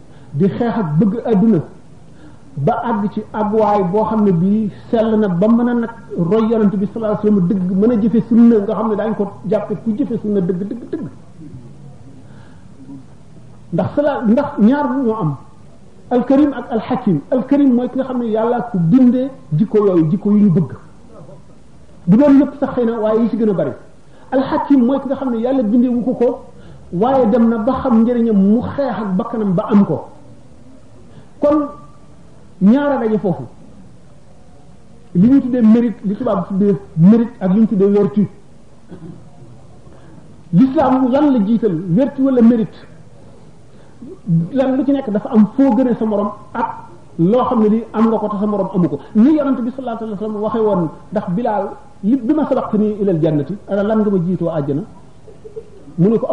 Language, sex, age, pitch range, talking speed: French, male, 50-69, 190-245 Hz, 35 wpm